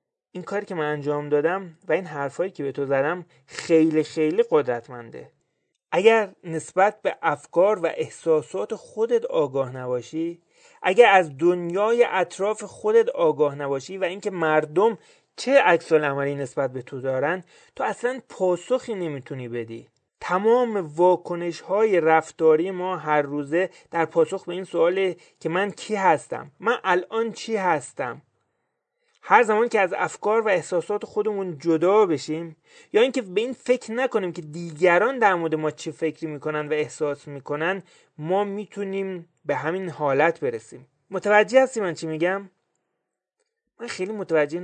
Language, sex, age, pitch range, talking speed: Persian, male, 30-49, 155-210 Hz, 145 wpm